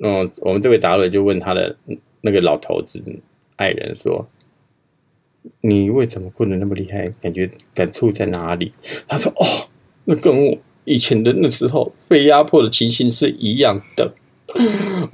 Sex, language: male, Chinese